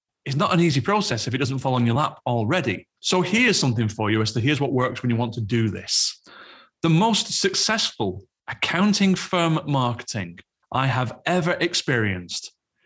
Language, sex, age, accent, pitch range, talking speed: English, male, 30-49, British, 120-165 Hz, 180 wpm